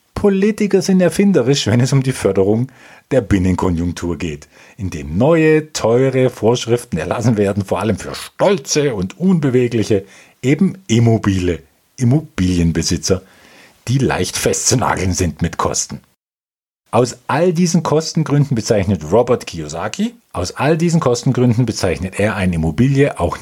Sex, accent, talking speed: male, German, 125 wpm